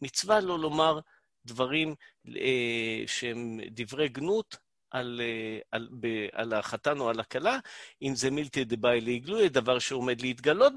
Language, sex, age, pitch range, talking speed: Hebrew, male, 50-69, 130-185 Hz, 140 wpm